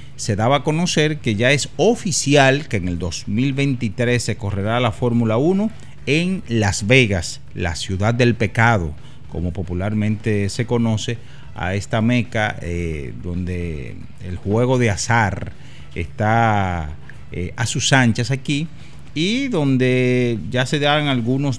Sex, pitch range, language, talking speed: male, 100-130 Hz, Spanish, 135 wpm